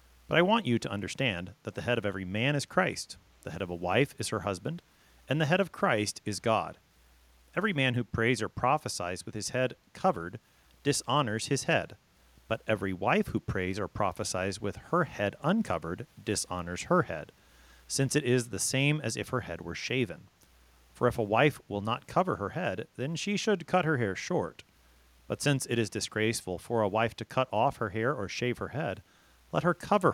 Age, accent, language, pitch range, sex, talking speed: 40-59, American, English, 95-140 Hz, male, 205 wpm